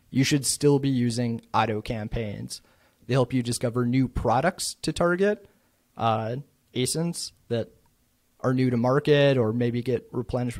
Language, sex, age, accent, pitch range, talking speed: English, male, 30-49, American, 115-140 Hz, 145 wpm